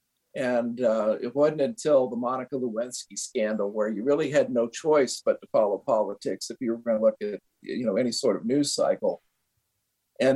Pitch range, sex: 115-145 Hz, male